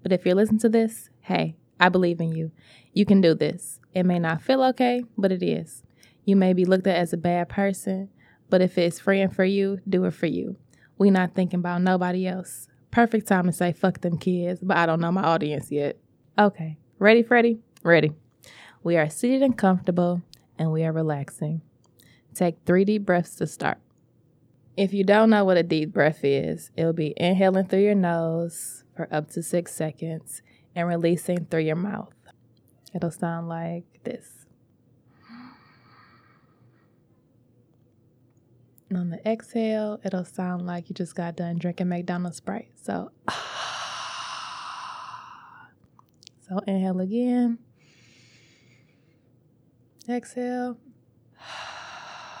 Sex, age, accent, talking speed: female, 20-39, American, 150 wpm